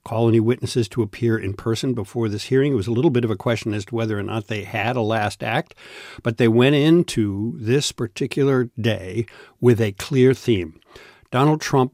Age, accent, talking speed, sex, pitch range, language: 60-79, American, 205 wpm, male, 110-130 Hz, English